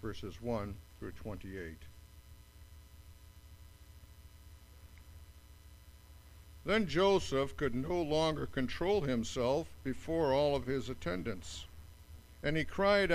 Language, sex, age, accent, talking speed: English, male, 60-79, American, 85 wpm